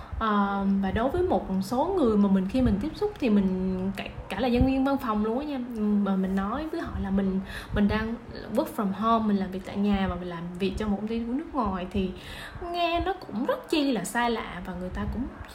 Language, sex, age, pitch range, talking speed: Vietnamese, female, 20-39, 195-250 Hz, 250 wpm